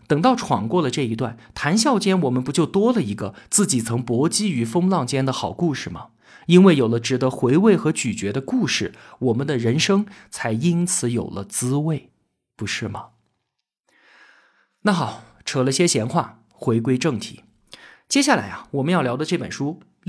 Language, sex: Chinese, male